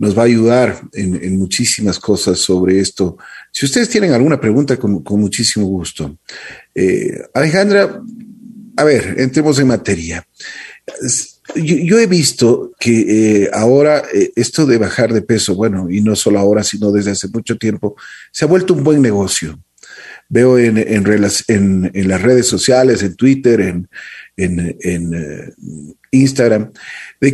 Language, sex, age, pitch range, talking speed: Spanish, male, 40-59, 100-145 Hz, 150 wpm